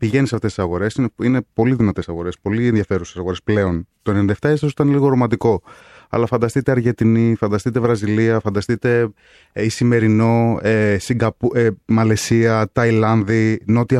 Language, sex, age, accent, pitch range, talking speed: Greek, male, 20-39, native, 105-130 Hz, 140 wpm